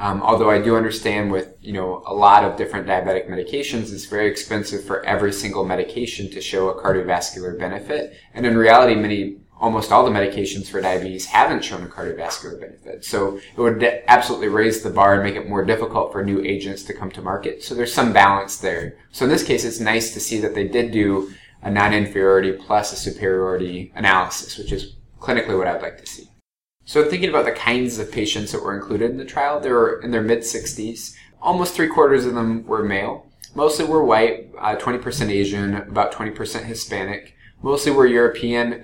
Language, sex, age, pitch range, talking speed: English, male, 20-39, 100-120 Hz, 195 wpm